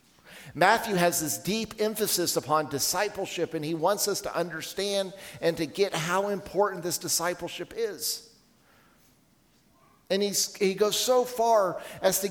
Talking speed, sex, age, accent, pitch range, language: 135 wpm, male, 50-69, American, 160-205 Hz, English